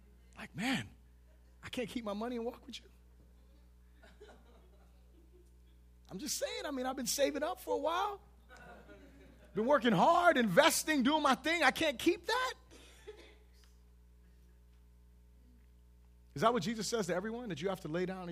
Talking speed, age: 155 wpm, 30-49